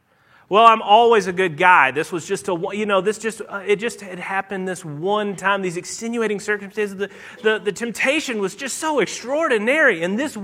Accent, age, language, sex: American, 30-49, English, male